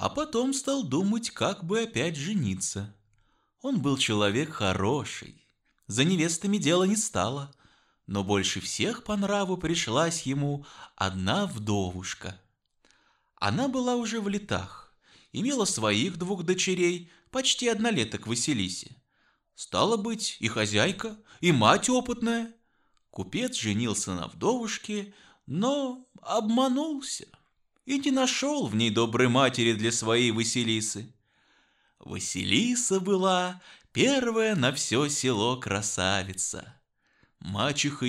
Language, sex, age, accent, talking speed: Russian, male, 20-39, native, 110 wpm